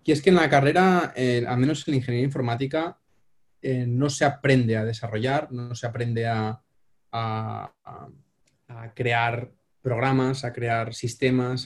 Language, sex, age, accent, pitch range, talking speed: English, male, 20-39, Spanish, 120-140 Hz, 150 wpm